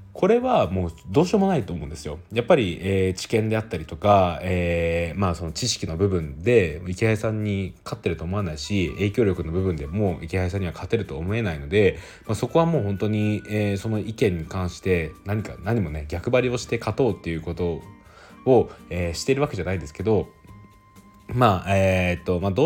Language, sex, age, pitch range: Japanese, male, 20-39, 85-110 Hz